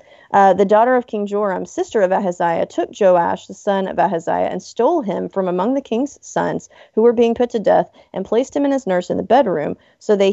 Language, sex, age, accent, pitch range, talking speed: English, female, 30-49, American, 180-225 Hz, 230 wpm